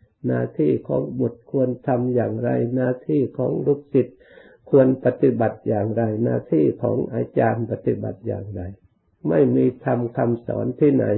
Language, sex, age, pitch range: Thai, male, 60-79, 110-130 Hz